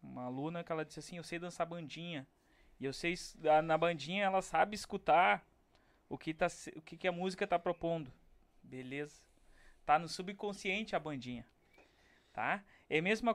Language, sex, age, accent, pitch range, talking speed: Portuguese, male, 20-39, Brazilian, 135-195 Hz, 175 wpm